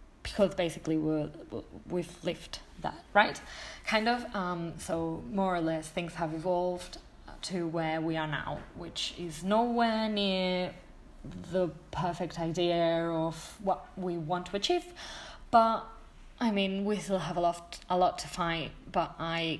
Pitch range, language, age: 160-205 Hz, English, 20-39